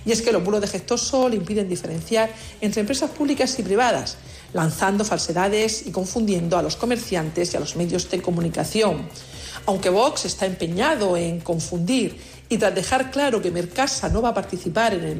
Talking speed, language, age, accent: 180 wpm, Spanish, 50-69, Spanish